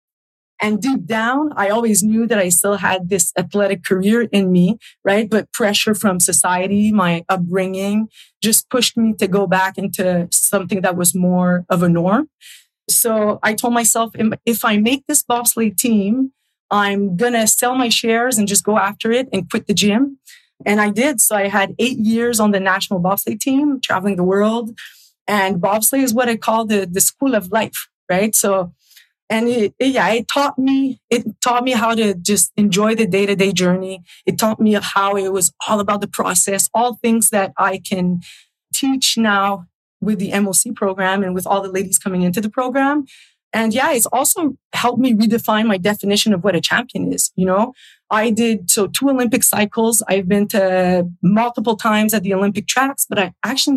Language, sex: English, female